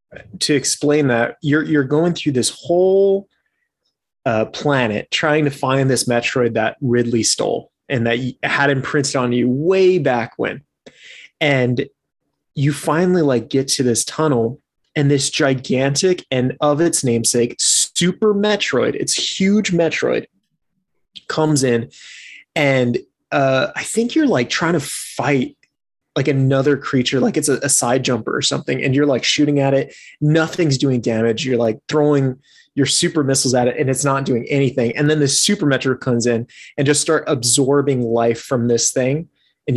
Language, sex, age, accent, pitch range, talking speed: English, male, 20-39, American, 120-150 Hz, 165 wpm